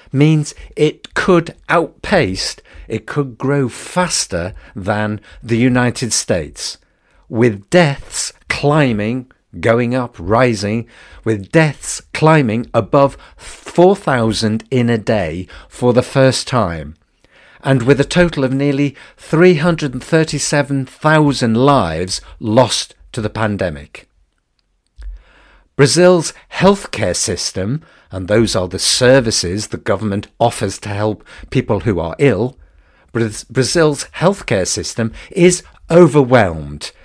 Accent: British